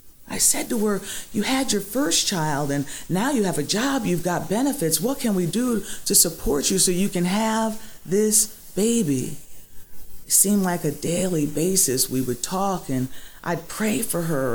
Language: English